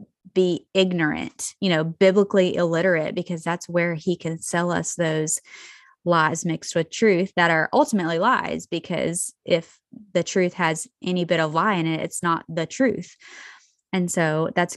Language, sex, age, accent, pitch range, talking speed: English, female, 20-39, American, 165-210 Hz, 165 wpm